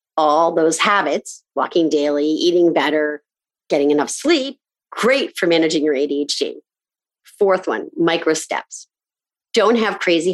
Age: 40-59